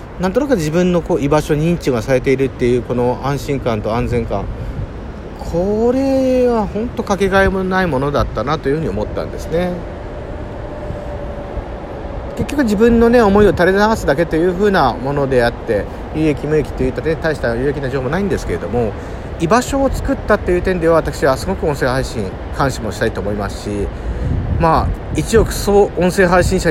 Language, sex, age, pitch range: Japanese, male, 40-59, 130-195 Hz